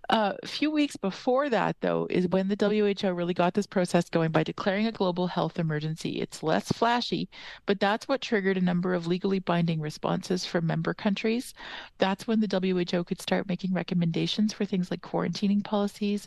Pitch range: 170-210 Hz